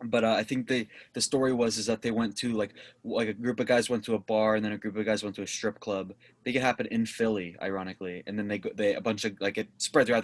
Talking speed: 315 wpm